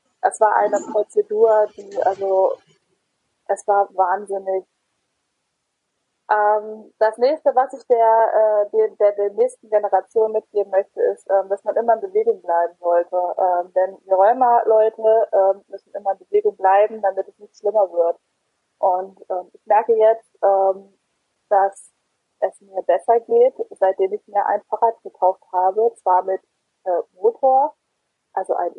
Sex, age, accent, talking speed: female, 20-39, German, 150 wpm